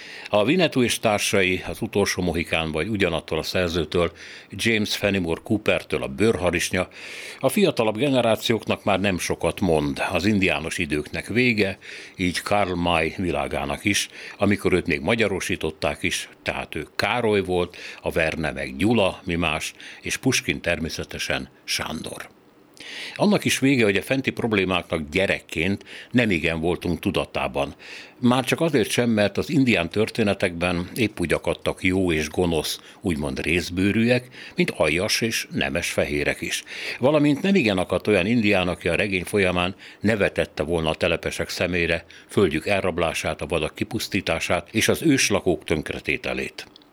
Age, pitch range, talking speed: 60-79, 80-110 Hz, 140 wpm